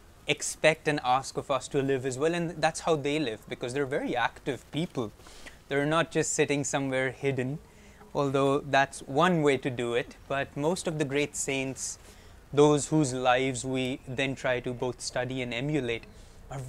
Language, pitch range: English, 125-150 Hz